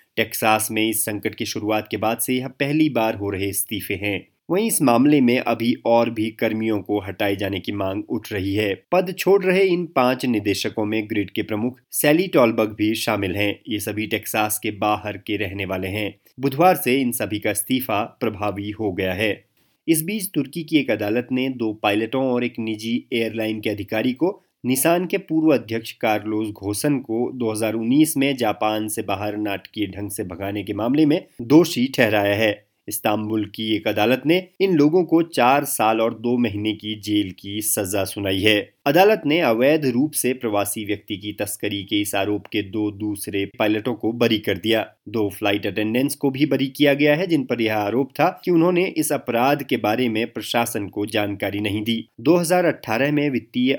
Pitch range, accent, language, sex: 105-135 Hz, native, Hindi, male